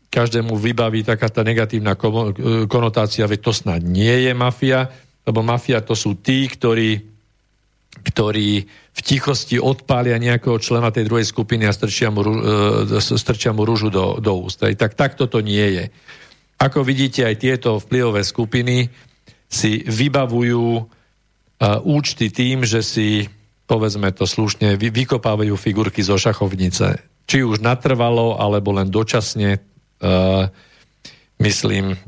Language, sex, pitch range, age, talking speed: Slovak, male, 105-125 Hz, 50-69, 125 wpm